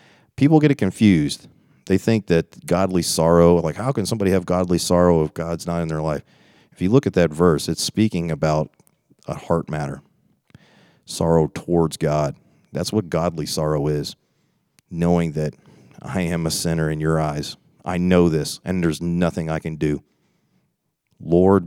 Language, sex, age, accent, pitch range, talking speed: English, male, 40-59, American, 80-95 Hz, 170 wpm